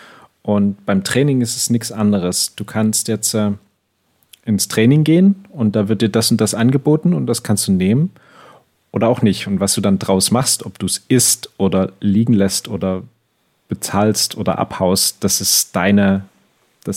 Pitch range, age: 95-120 Hz, 40-59